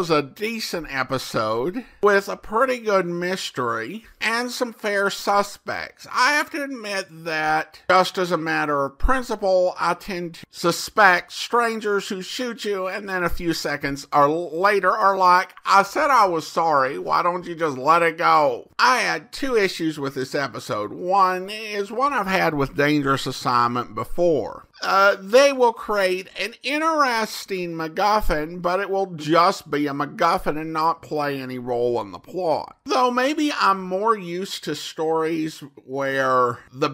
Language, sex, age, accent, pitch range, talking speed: English, male, 50-69, American, 155-205 Hz, 160 wpm